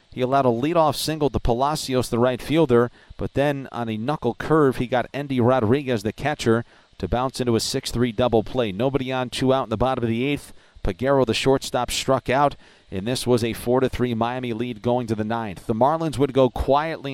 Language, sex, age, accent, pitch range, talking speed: English, male, 40-59, American, 120-140 Hz, 210 wpm